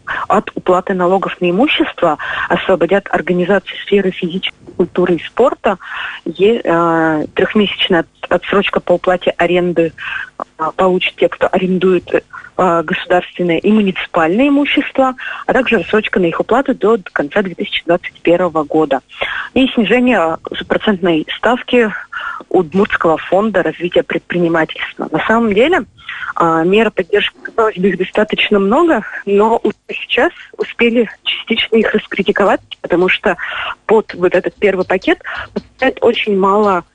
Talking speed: 120 wpm